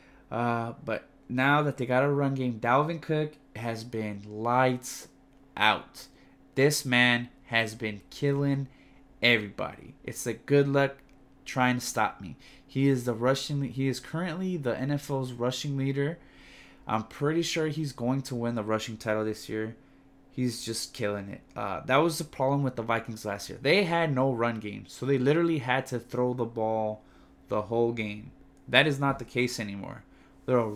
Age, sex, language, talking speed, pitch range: 20-39, male, English, 175 wpm, 115-135 Hz